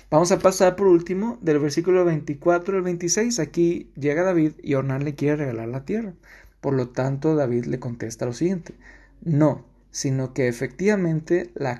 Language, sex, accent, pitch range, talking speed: Spanish, male, Mexican, 125-170 Hz, 170 wpm